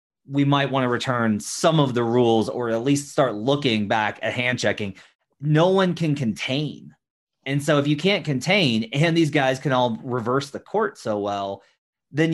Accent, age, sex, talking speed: American, 30-49, male, 190 wpm